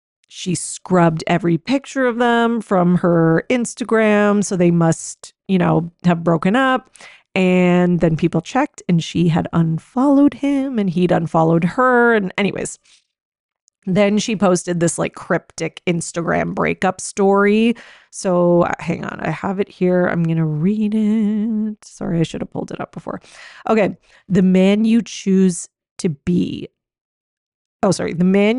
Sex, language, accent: female, English, American